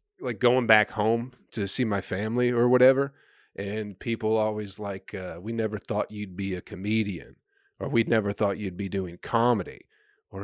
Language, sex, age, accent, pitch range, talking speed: English, male, 40-59, American, 110-155 Hz, 180 wpm